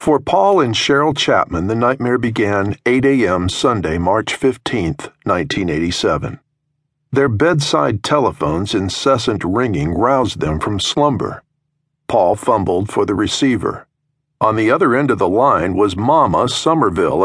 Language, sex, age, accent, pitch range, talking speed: English, male, 50-69, American, 120-150 Hz, 130 wpm